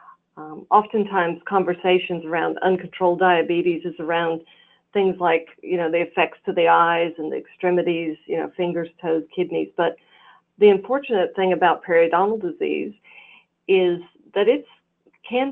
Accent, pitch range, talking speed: American, 165-195 Hz, 140 wpm